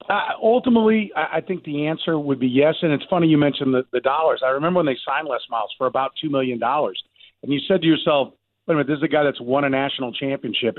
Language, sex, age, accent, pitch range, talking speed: English, male, 40-59, American, 125-150 Hz, 260 wpm